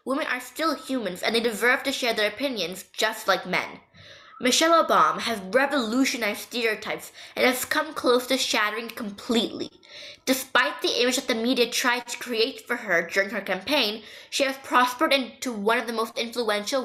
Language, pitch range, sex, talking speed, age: English, 215-265 Hz, female, 175 wpm, 10-29